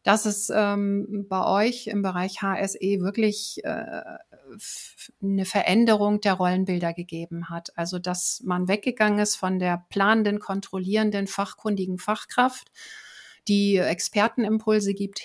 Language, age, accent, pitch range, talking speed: German, 50-69, German, 185-220 Hz, 120 wpm